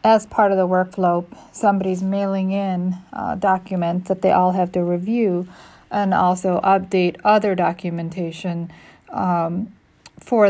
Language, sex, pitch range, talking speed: English, female, 185-210 Hz, 130 wpm